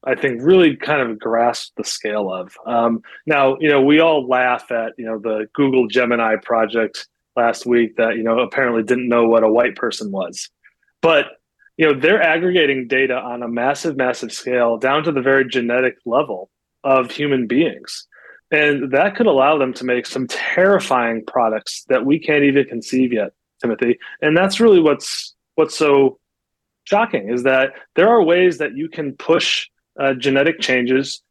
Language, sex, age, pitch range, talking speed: English, male, 30-49, 120-150 Hz, 175 wpm